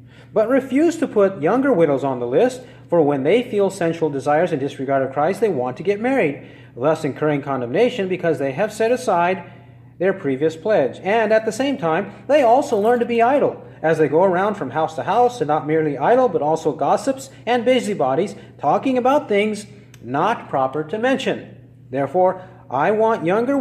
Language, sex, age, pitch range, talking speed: English, male, 40-59, 135-205 Hz, 190 wpm